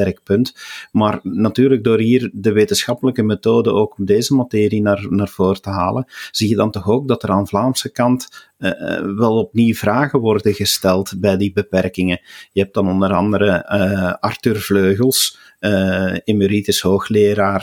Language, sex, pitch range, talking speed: Dutch, male, 100-115 Hz, 155 wpm